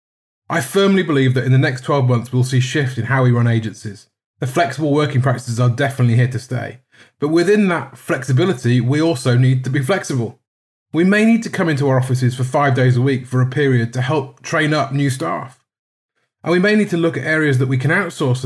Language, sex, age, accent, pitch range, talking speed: English, male, 30-49, British, 125-150 Hz, 230 wpm